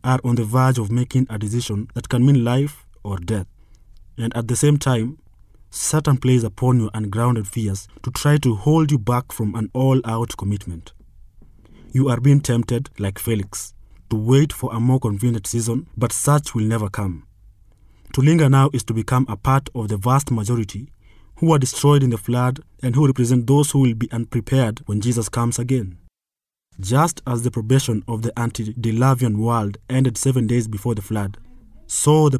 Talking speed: 185 wpm